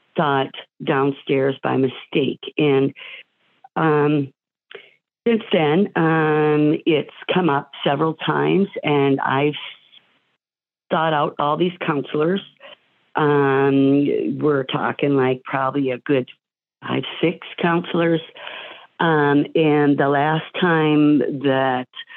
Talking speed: 100 wpm